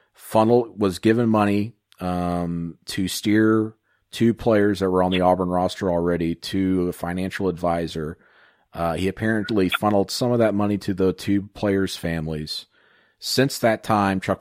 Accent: American